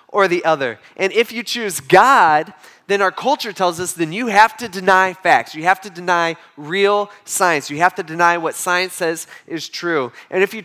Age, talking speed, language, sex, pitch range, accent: 20-39, 210 wpm, English, male, 165-200 Hz, American